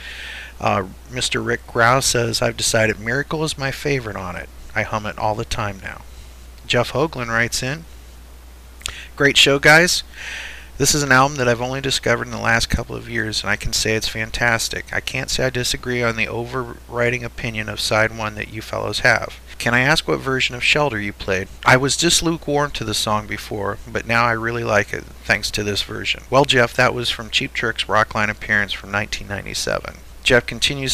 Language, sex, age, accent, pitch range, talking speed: English, male, 30-49, American, 105-125 Hz, 200 wpm